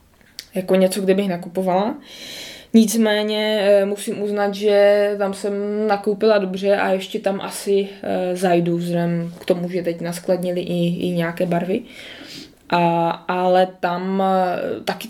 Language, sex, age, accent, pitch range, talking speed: Czech, female, 20-39, native, 180-205 Hz, 125 wpm